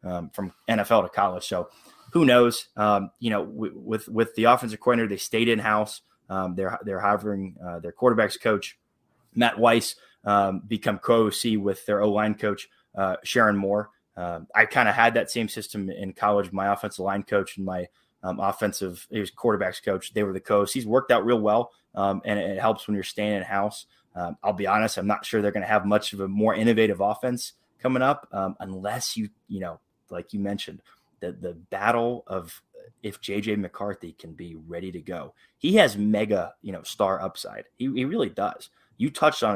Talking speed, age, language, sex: 200 wpm, 20-39, English, male